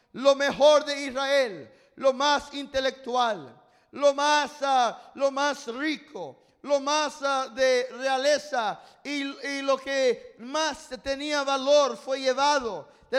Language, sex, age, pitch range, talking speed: English, male, 50-69, 260-295 Hz, 125 wpm